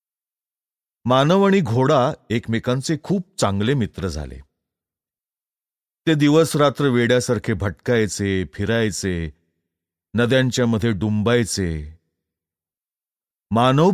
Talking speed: 75 wpm